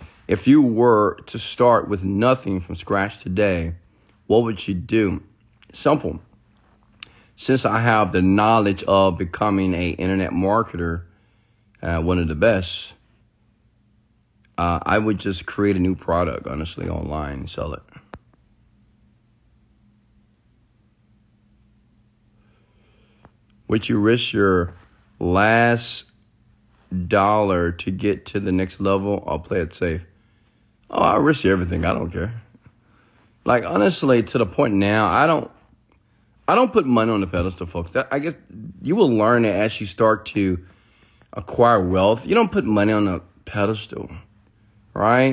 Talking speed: 135 wpm